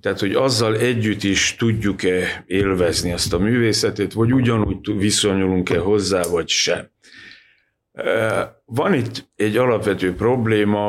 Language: Hungarian